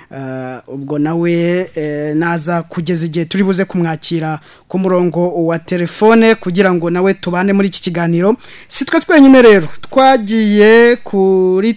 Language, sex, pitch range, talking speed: French, male, 180-220 Hz, 135 wpm